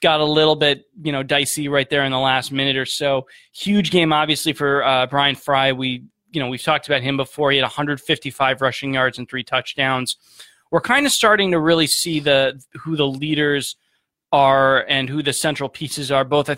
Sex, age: male, 20-39